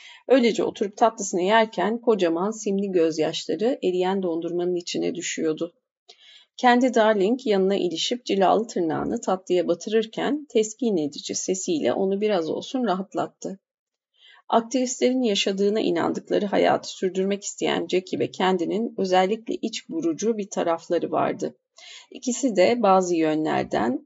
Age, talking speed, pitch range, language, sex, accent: 40-59, 110 wpm, 180-240 Hz, Turkish, female, native